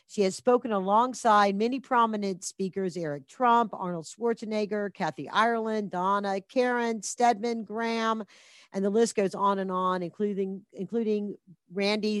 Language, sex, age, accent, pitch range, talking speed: English, female, 50-69, American, 180-230 Hz, 135 wpm